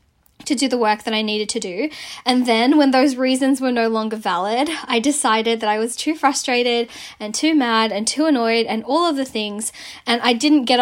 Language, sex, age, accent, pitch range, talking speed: English, female, 10-29, Australian, 225-275 Hz, 220 wpm